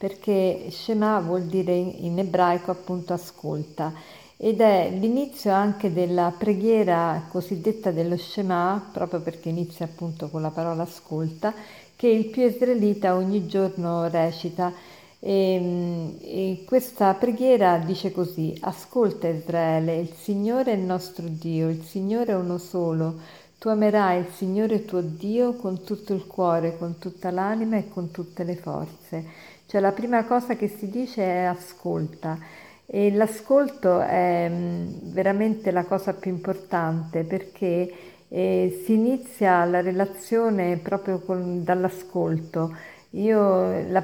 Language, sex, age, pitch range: Italian, female, 50-69, 170-200 Hz